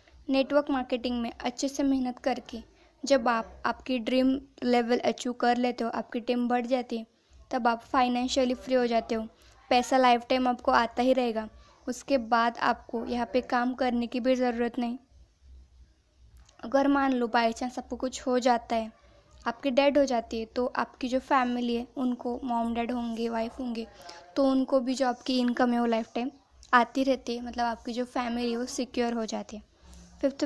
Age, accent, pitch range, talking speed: 20-39, native, 240-265 Hz, 185 wpm